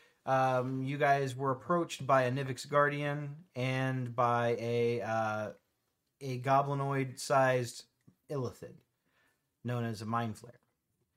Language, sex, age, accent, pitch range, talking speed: English, male, 30-49, American, 115-140 Hz, 115 wpm